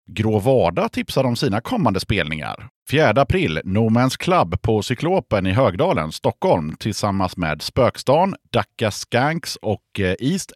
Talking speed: 130 wpm